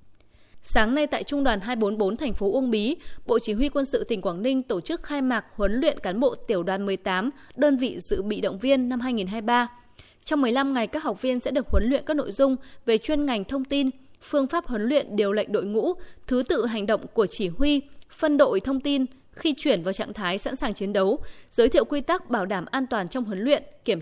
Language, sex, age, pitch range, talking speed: Vietnamese, female, 20-39, 205-275 Hz, 235 wpm